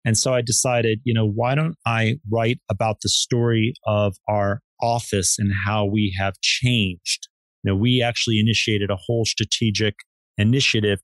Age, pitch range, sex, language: 40-59, 105-130 Hz, male, English